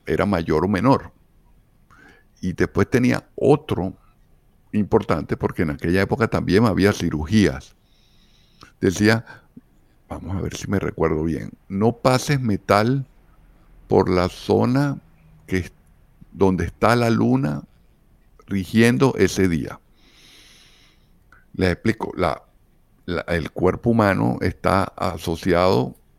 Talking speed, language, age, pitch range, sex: 100 wpm, Spanish, 50-69, 85-115 Hz, male